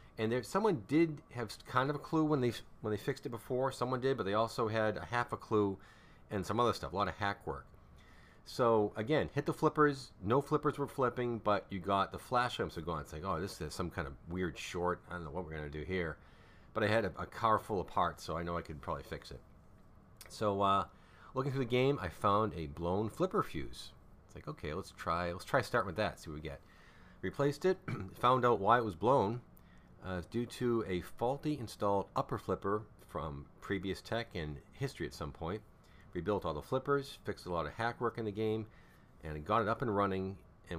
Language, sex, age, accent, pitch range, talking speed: English, male, 40-59, American, 85-115 Hz, 230 wpm